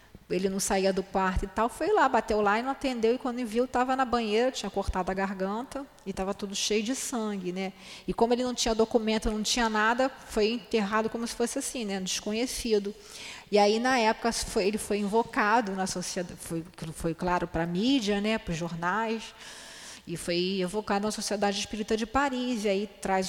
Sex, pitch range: female, 190-235 Hz